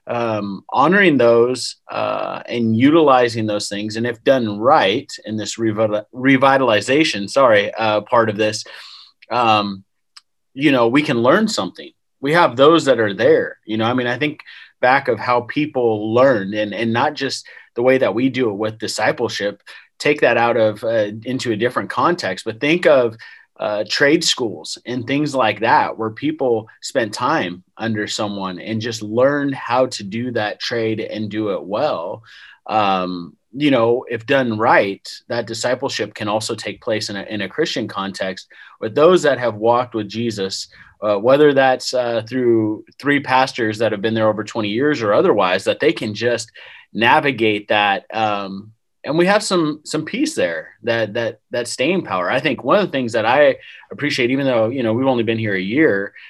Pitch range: 105-130 Hz